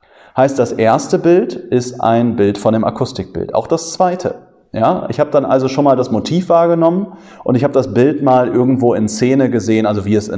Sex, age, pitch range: male, 30-49, 110-145 Hz